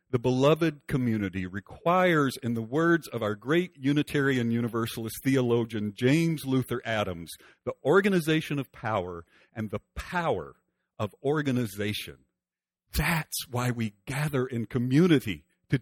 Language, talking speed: English, 120 wpm